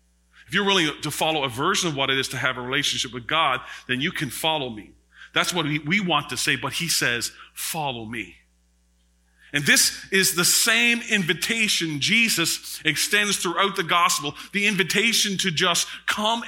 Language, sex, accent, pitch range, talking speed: English, male, American, 130-215 Hz, 180 wpm